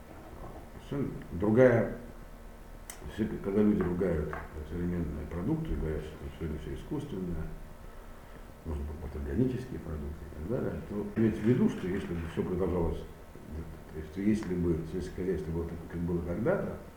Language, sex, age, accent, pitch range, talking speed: Russian, male, 60-79, native, 75-100 Hz, 135 wpm